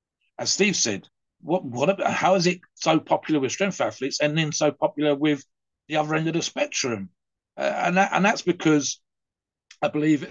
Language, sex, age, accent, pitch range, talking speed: English, male, 50-69, British, 115-160 Hz, 190 wpm